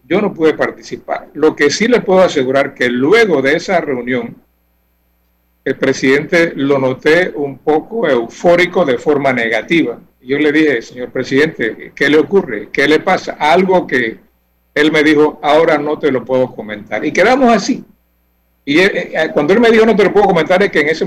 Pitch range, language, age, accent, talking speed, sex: 125-175 Hz, Spanish, 60-79, American, 180 wpm, male